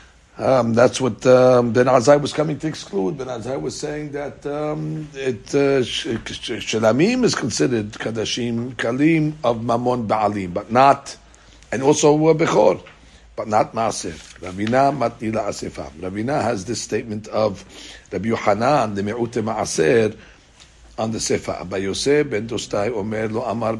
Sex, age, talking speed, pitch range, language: male, 60-79, 125 wpm, 105-135 Hz, English